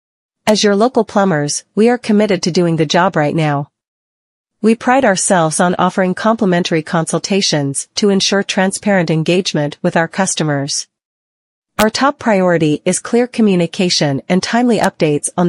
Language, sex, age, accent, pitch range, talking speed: English, female, 40-59, American, 155-205 Hz, 145 wpm